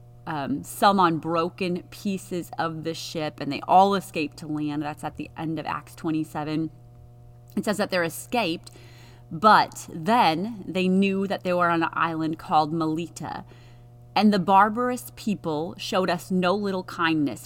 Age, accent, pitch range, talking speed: 30-49, American, 145-190 Hz, 160 wpm